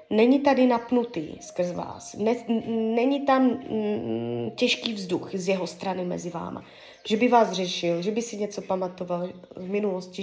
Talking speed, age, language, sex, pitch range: 145 wpm, 20-39, Czech, female, 185-245 Hz